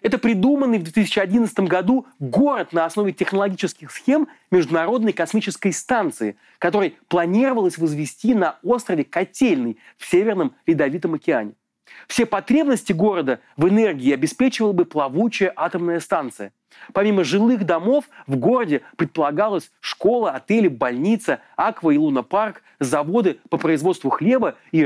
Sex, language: male, Russian